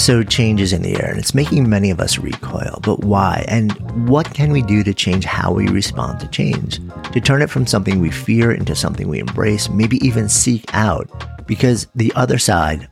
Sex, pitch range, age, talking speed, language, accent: male, 90-115 Hz, 50-69, 215 wpm, English, American